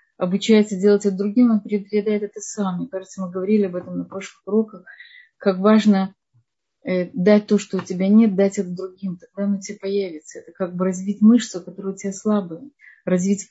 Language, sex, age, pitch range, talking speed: Russian, female, 30-49, 190-220 Hz, 185 wpm